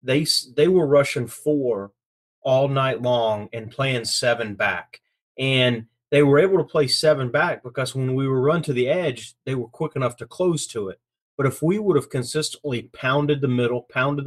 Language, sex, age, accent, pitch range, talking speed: English, male, 30-49, American, 115-145 Hz, 195 wpm